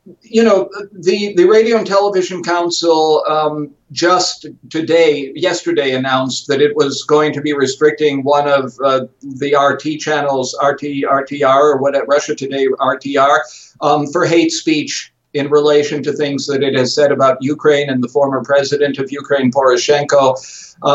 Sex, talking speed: male, 150 wpm